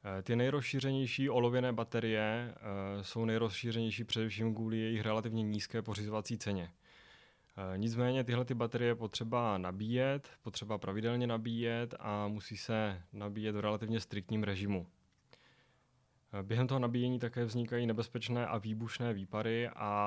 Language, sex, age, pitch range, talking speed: Czech, male, 20-39, 100-115 Hz, 115 wpm